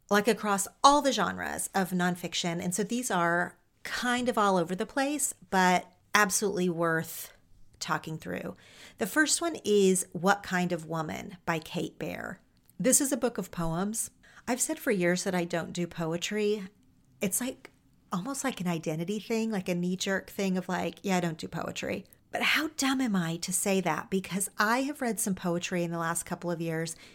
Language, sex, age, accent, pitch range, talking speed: English, female, 40-59, American, 170-210 Hz, 190 wpm